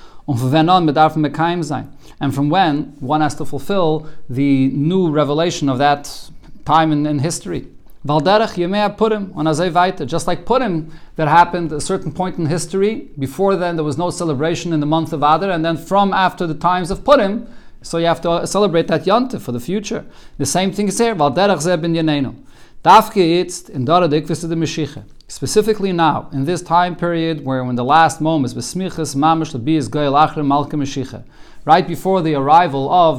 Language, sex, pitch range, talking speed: English, male, 145-185 Hz, 150 wpm